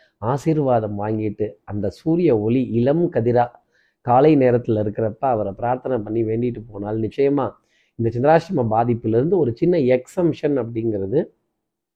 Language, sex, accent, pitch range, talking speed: Tamil, male, native, 120-160 Hz, 120 wpm